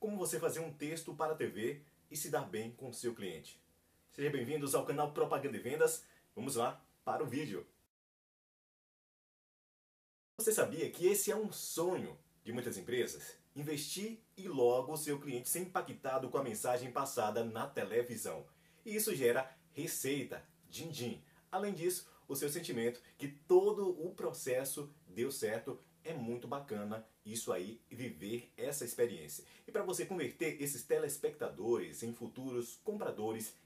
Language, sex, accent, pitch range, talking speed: Portuguese, male, Brazilian, 120-185 Hz, 150 wpm